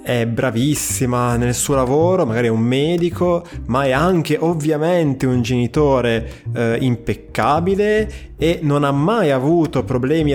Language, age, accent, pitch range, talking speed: Italian, 20-39, native, 115-145 Hz, 135 wpm